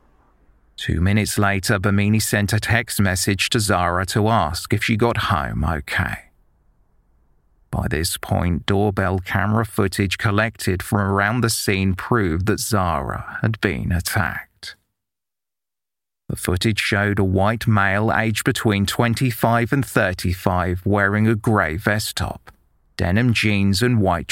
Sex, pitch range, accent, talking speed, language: male, 90-110 Hz, British, 135 wpm, English